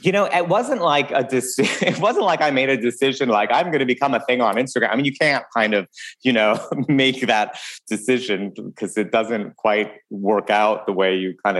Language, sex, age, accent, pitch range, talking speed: English, male, 30-49, American, 100-130 Hz, 225 wpm